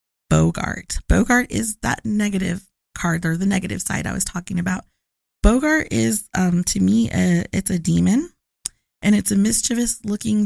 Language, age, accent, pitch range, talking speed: English, 20-39, American, 175-210 Hz, 160 wpm